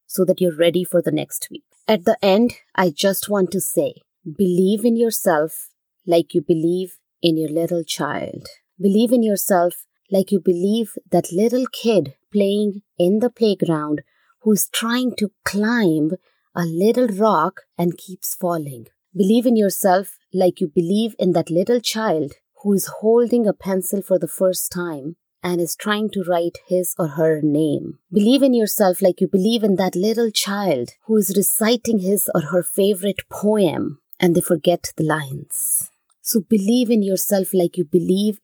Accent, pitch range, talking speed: Indian, 175-215 Hz, 165 wpm